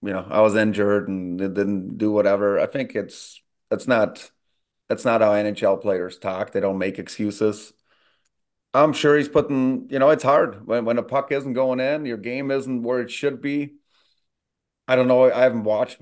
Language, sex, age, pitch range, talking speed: English, male, 30-49, 110-130 Hz, 195 wpm